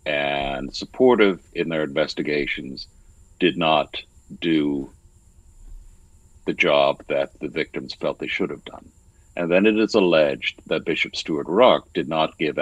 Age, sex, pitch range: 60-79, male, 80-95 Hz